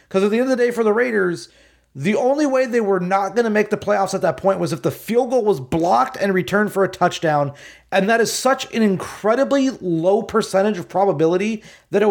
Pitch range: 180-235 Hz